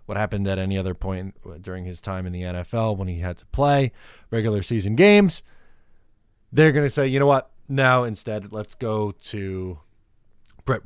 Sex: male